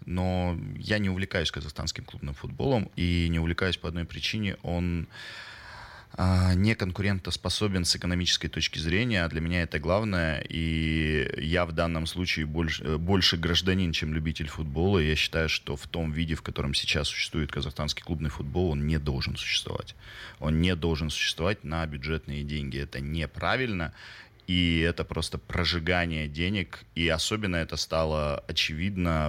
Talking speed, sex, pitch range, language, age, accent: 145 wpm, male, 80-95 Hz, Russian, 20-39, native